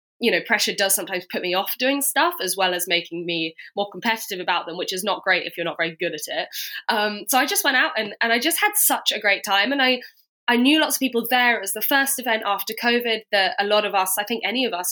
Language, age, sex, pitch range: English, 20-39, female, 175-225 Hz